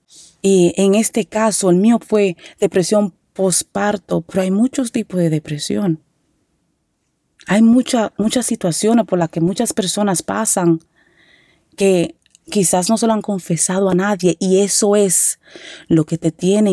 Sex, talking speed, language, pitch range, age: female, 145 wpm, Spanish, 175-215 Hz, 30-49